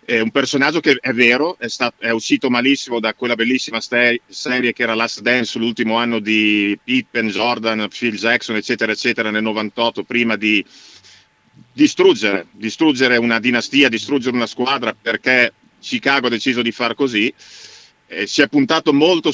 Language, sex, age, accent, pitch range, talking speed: Italian, male, 50-69, native, 110-130 Hz, 160 wpm